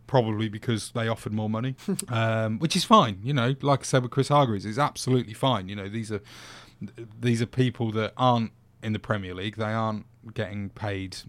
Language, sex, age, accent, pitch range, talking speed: English, male, 30-49, British, 110-125 Hz, 200 wpm